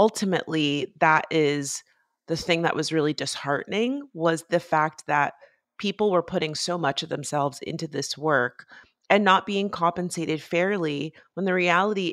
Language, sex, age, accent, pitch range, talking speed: English, female, 30-49, American, 150-195 Hz, 155 wpm